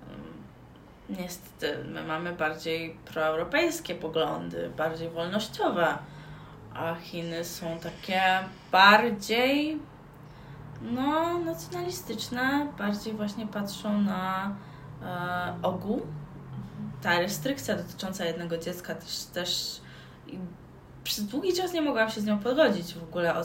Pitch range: 170-220 Hz